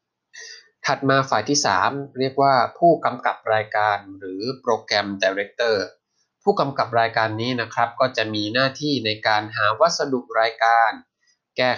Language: Thai